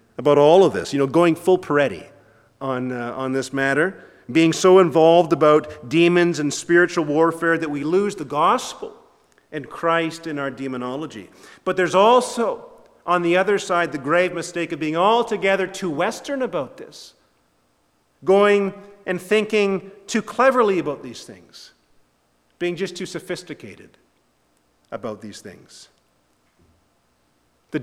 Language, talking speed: English, 140 wpm